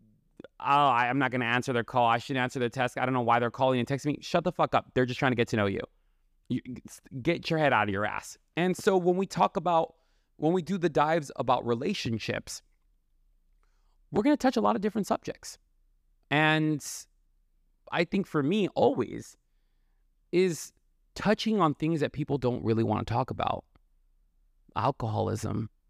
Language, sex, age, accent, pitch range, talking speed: English, male, 30-49, American, 95-135 Hz, 190 wpm